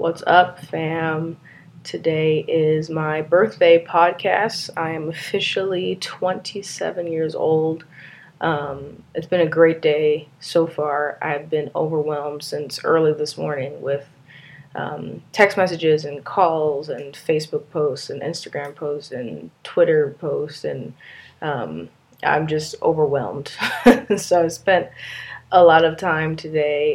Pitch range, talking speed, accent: 145-165 Hz, 125 wpm, American